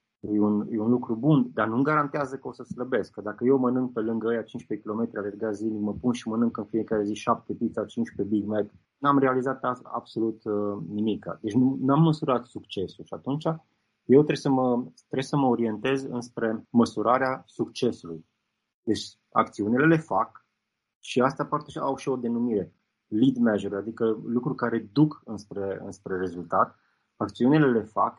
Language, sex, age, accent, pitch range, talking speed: Romanian, male, 20-39, native, 105-130 Hz, 165 wpm